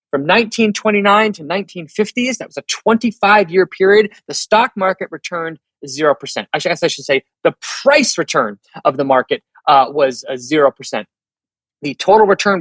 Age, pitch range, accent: 30-49, 155-210 Hz, American